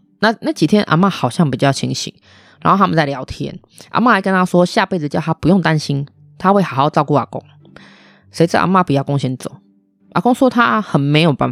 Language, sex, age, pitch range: Chinese, female, 20-39, 140-195 Hz